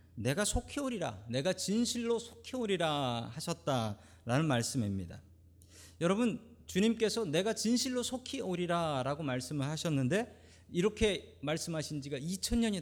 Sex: male